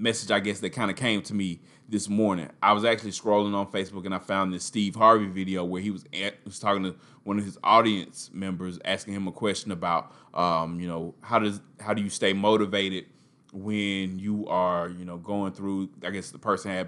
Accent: American